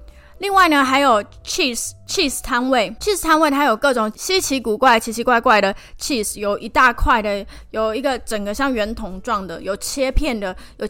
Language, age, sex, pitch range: Chinese, 20-39, female, 200-270 Hz